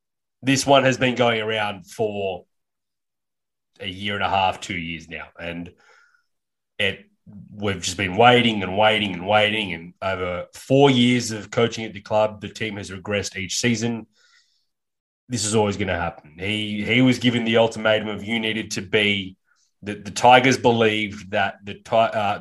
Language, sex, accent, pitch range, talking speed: English, male, Australian, 100-120 Hz, 170 wpm